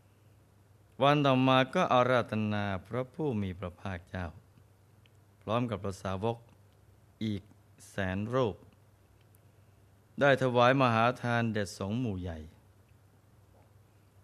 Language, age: Thai, 20-39